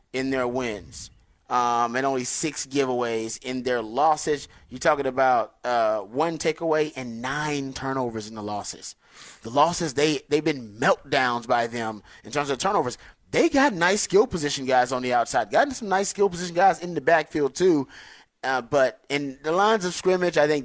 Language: English